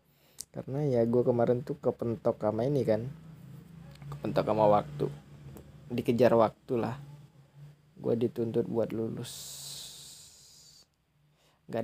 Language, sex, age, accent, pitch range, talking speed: Indonesian, male, 20-39, native, 105-130 Hz, 100 wpm